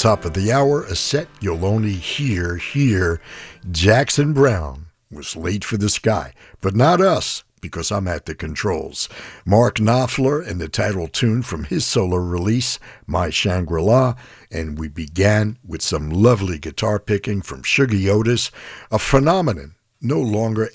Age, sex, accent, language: 60-79, male, American, English